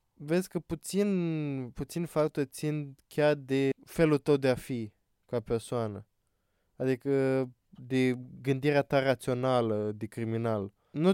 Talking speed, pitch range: 125 wpm, 125-155 Hz